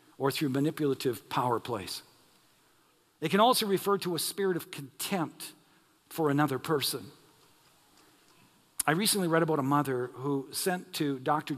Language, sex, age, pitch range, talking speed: English, male, 50-69, 140-185 Hz, 140 wpm